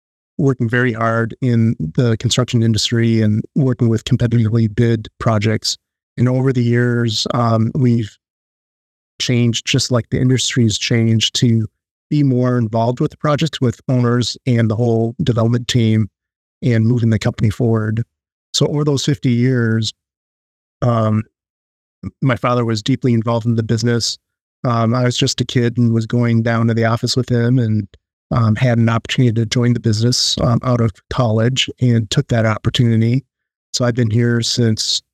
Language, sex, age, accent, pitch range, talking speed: English, male, 30-49, American, 110-125 Hz, 160 wpm